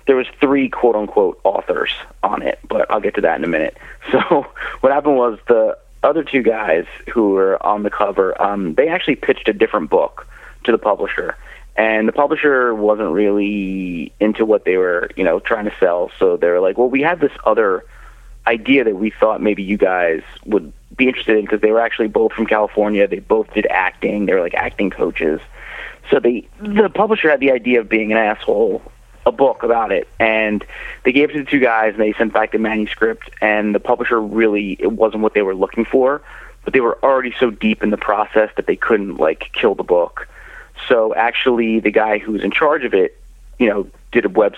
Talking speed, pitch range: 215 wpm, 105-150 Hz